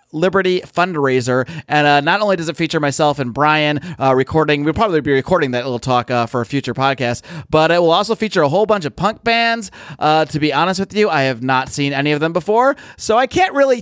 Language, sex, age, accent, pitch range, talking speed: English, male, 30-49, American, 135-185 Hz, 240 wpm